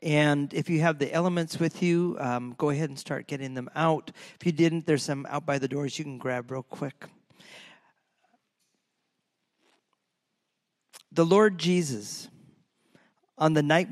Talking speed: 155 wpm